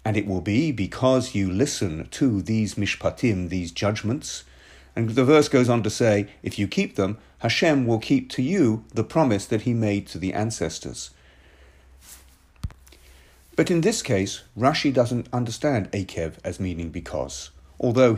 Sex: male